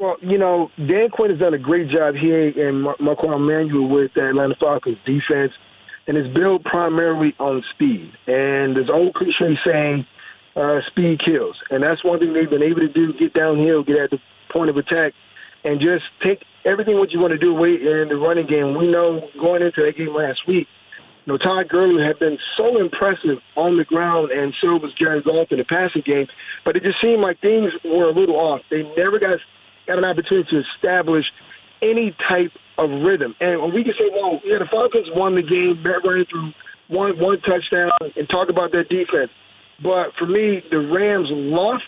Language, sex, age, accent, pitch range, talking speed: English, male, 40-59, American, 150-185 Hz, 210 wpm